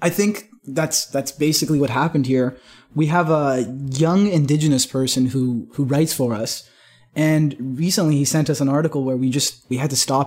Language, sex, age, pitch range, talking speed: English, male, 20-39, 140-170 Hz, 195 wpm